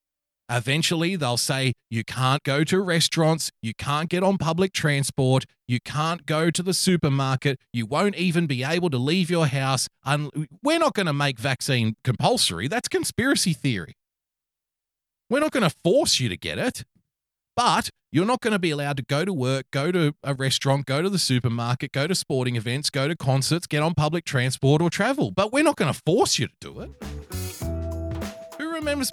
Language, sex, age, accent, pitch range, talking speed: English, male, 30-49, Australian, 125-180 Hz, 185 wpm